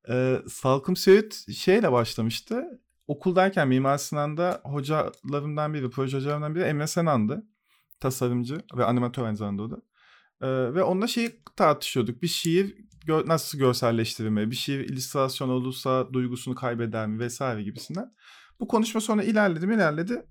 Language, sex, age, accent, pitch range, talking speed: Turkish, male, 40-59, native, 125-195 Hz, 135 wpm